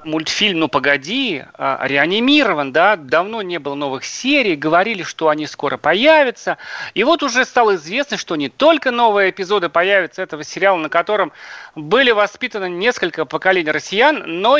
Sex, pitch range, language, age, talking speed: male, 160-230 Hz, Russian, 40-59, 150 wpm